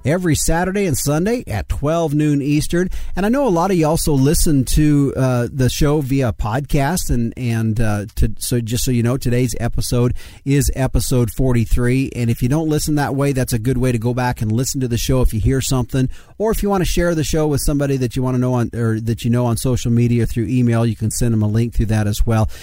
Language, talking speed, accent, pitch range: English, 255 wpm, American, 115-150 Hz